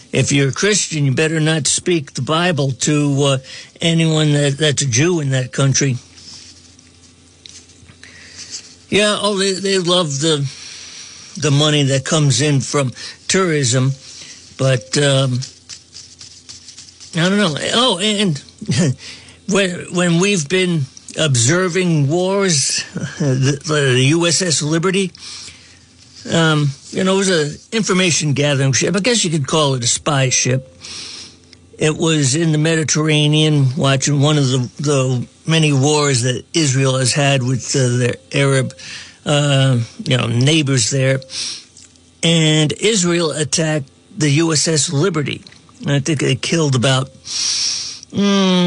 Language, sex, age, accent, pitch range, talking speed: English, male, 60-79, American, 125-165 Hz, 135 wpm